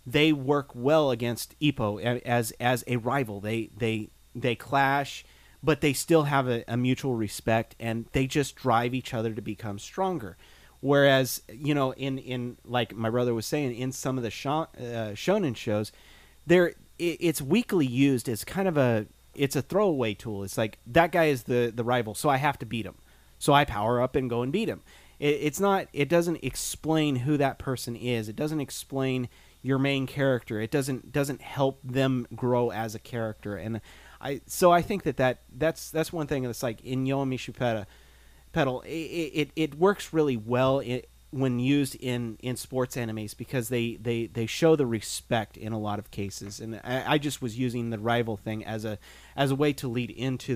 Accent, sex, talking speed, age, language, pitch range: American, male, 200 wpm, 30-49, English, 115-140 Hz